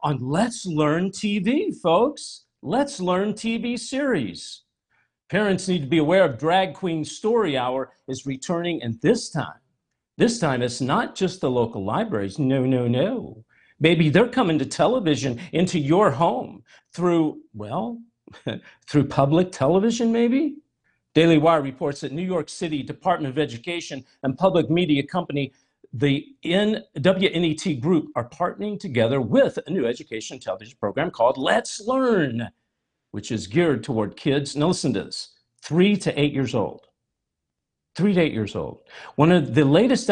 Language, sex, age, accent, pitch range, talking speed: English, male, 50-69, American, 135-190 Hz, 150 wpm